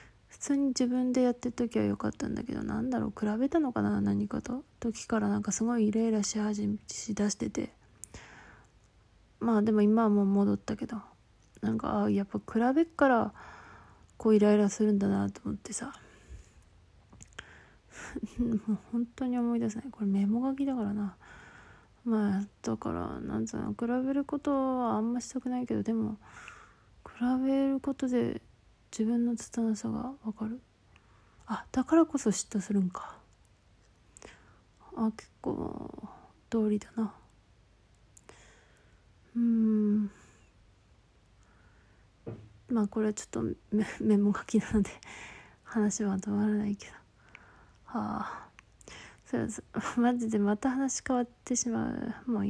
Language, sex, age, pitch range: Japanese, female, 20-39, 195-245 Hz